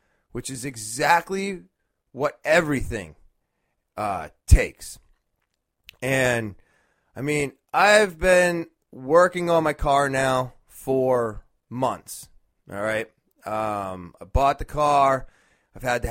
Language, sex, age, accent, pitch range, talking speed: English, male, 30-49, American, 120-165 Hz, 105 wpm